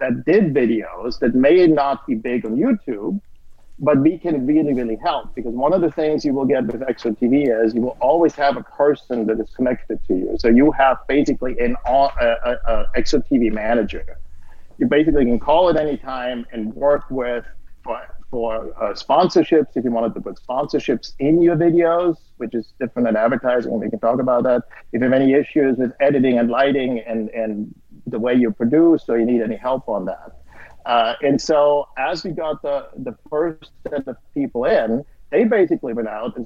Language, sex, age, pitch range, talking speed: English, male, 50-69, 115-150 Hz, 200 wpm